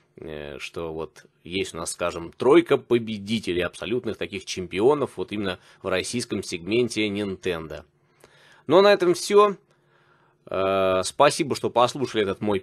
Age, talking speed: 20-39, 125 wpm